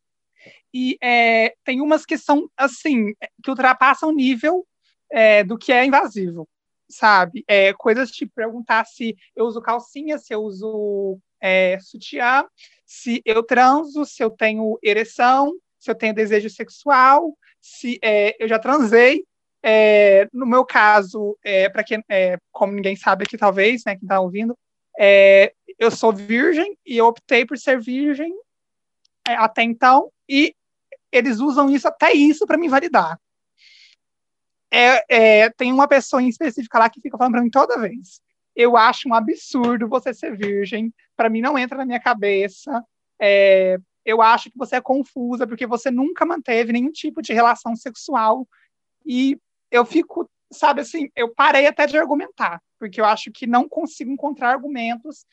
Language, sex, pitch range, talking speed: Portuguese, male, 220-280 Hz, 160 wpm